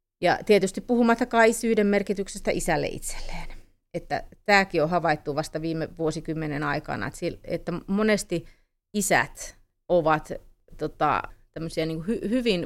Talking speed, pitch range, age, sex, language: 110 wpm, 155-185 Hz, 30-49, female, Finnish